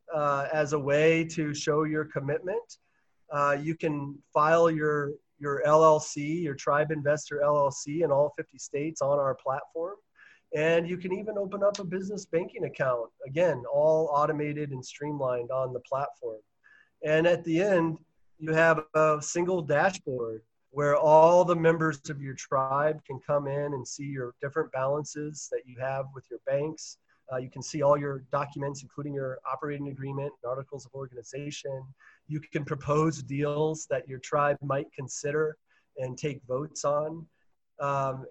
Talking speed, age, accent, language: 160 wpm, 30-49, American, English